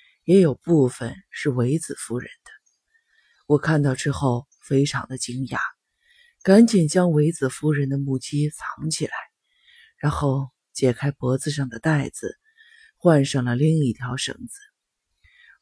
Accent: native